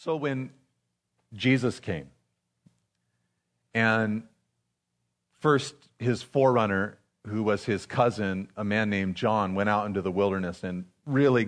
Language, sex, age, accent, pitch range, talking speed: English, male, 40-59, American, 95-135 Hz, 120 wpm